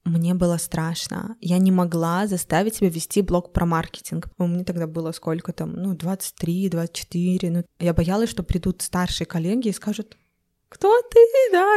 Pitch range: 175-225 Hz